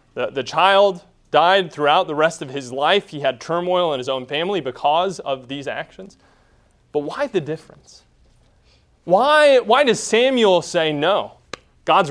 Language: English